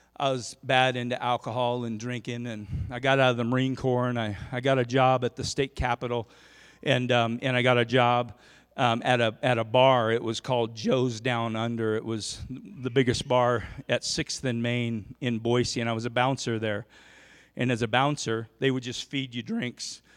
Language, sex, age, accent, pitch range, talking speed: English, male, 40-59, American, 115-130 Hz, 210 wpm